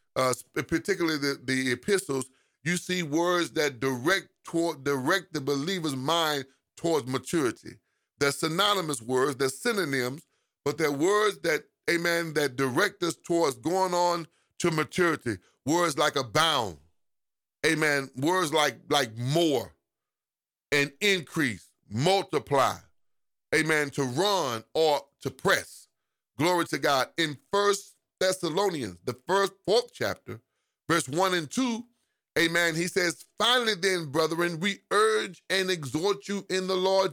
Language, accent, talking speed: English, American, 130 wpm